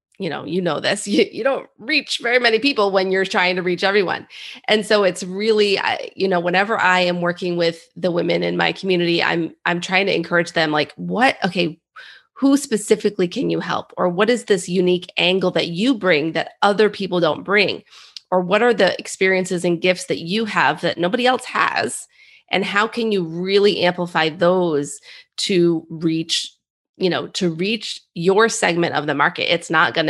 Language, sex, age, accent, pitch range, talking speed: English, female, 30-49, American, 175-210 Hz, 195 wpm